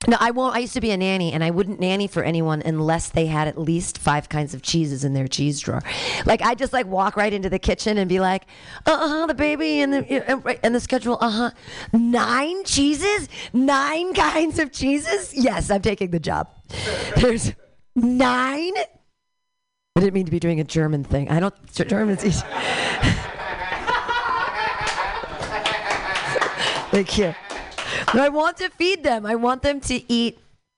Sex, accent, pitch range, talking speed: female, American, 170-285 Hz, 175 wpm